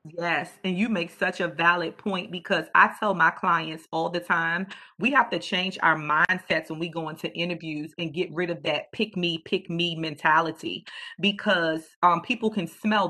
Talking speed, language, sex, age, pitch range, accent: 190 wpm, English, female, 40-59, 180-255 Hz, American